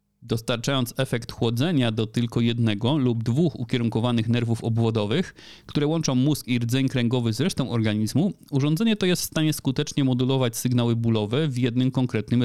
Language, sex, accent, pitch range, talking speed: Polish, male, native, 115-140 Hz, 155 wpm